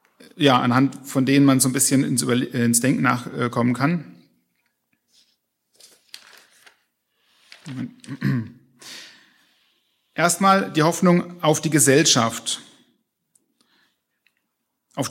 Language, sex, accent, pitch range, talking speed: German, male, German, 130-175 Hz, 75 wpm